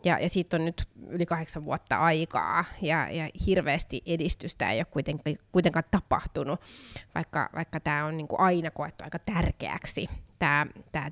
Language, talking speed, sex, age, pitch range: Finnish, 155 wpm, female, 20-39, 160-190 Hz